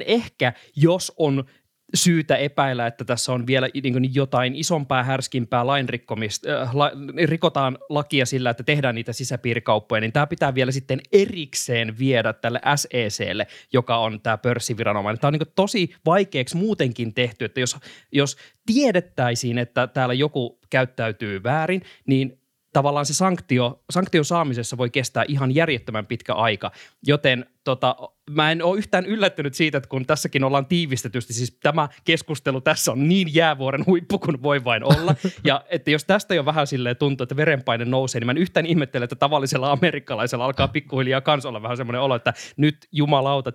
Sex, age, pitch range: male, 20-39, 125-155 Hz